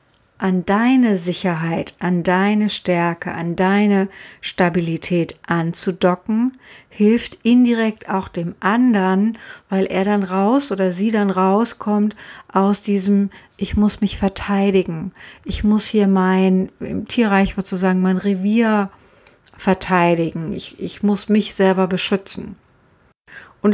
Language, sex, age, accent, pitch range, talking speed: German, female, 60-79, German, 175-205 Hz, 115 wpm